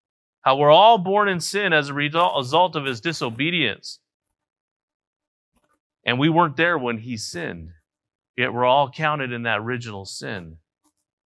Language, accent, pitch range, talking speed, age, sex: English, American, 110-150 Hz, 145 wpm, 30-49, male